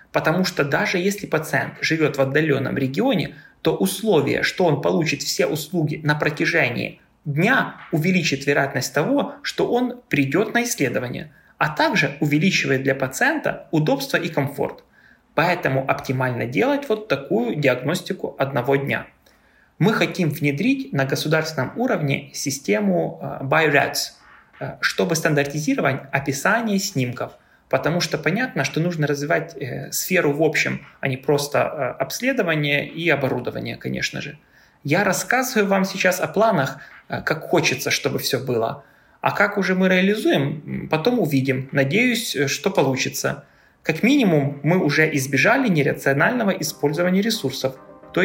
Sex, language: male, Russian